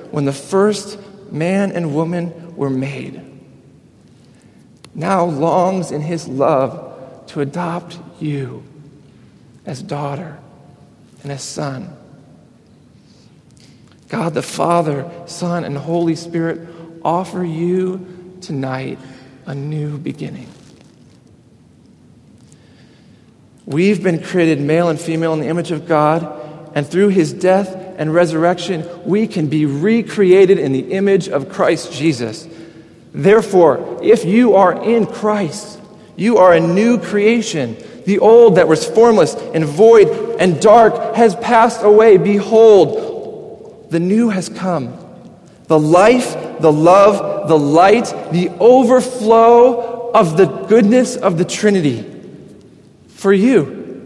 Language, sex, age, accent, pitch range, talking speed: English, male, 40-59, American, 160-210 Hz, 115 wpm